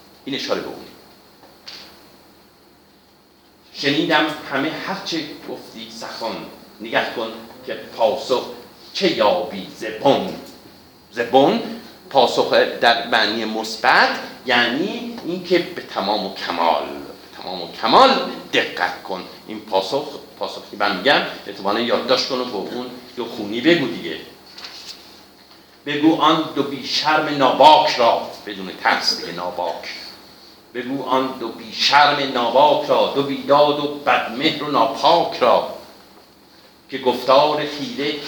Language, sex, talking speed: Persian, male, 115 wpm